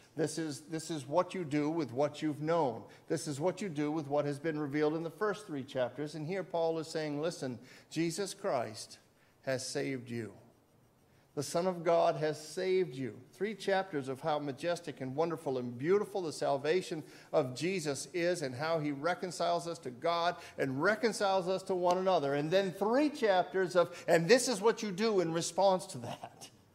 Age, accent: 50-69, American